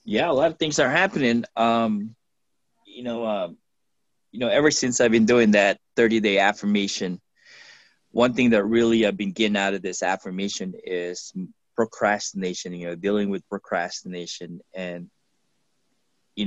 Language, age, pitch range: English, 20-39, 95-115 Hz